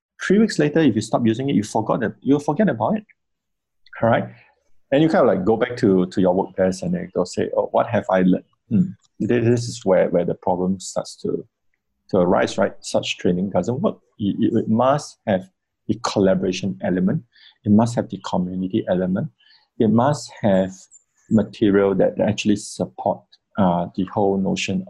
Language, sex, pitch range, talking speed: English, male, 95-115 Hz, 185 wpm